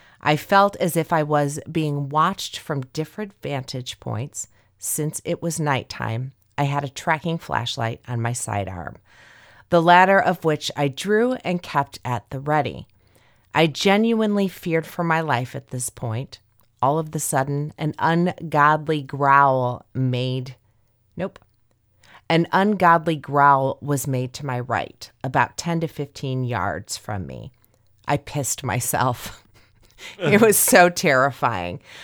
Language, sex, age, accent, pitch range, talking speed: English, female, 30-49, American, 120-165 Hz, 140 wpm